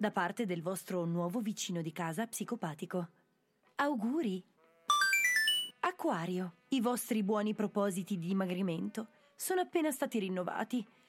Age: 20-39